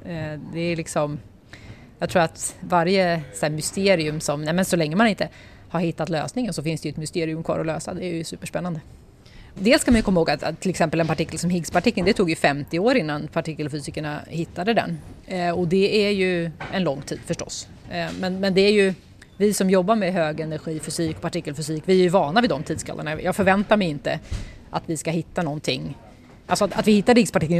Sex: female